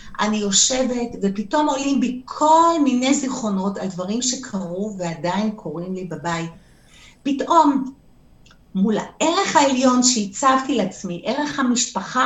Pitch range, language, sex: 190-265 Hz, Hebrew, female